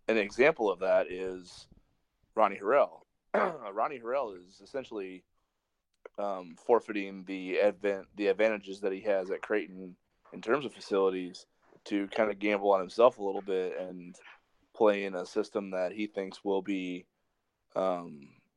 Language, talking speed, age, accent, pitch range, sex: English, 150 wpm, 30-49, American, 95-105 Hz, male